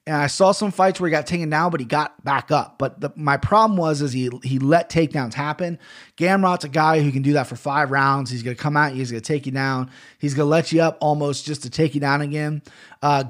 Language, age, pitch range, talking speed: English, 20-39, 140-165 Hz, 275 wpm